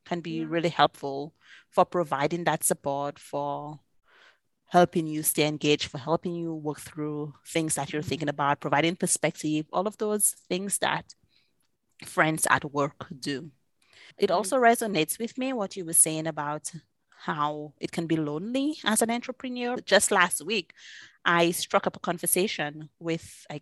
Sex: female